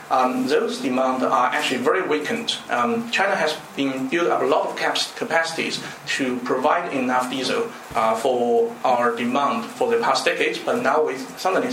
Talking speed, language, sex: 175 wpm, English, male